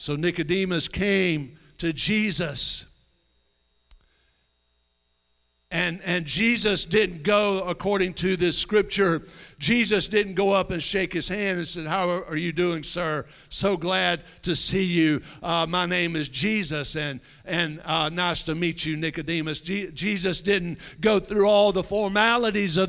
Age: 50-69